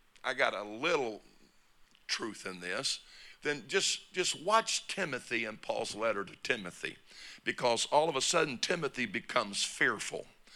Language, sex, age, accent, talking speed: English, male, 50-69, American, 140 wpm